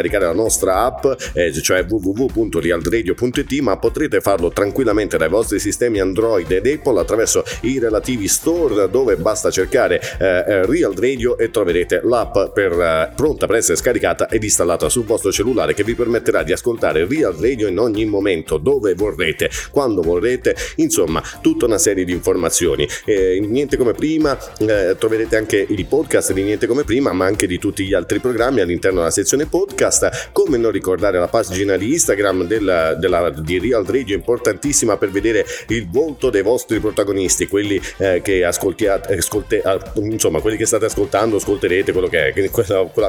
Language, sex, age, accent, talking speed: Italian, male, 30-49, native, 165 wpm